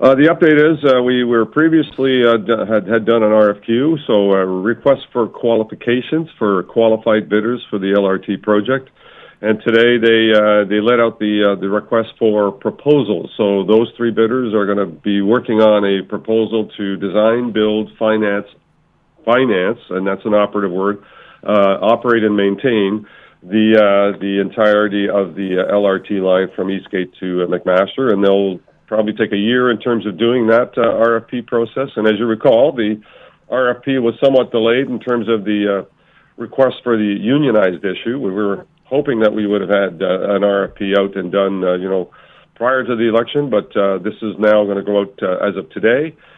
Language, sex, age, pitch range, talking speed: English, male, 50-69, 100-115 Hz, 190 wpm